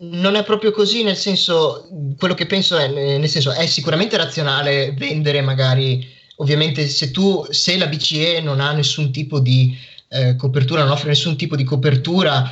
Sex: male